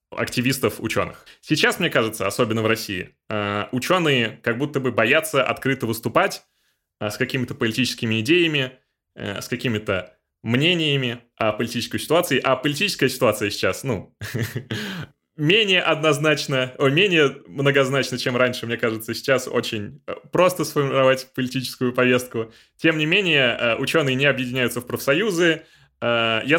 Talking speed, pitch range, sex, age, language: 120 wpm, 115-140 Hz, male, 20-39, Russian